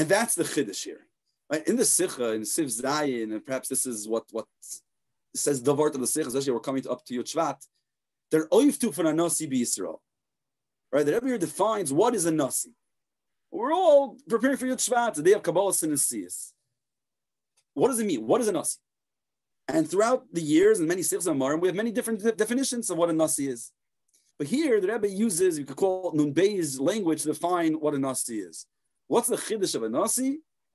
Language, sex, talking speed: English, male, 195 wpm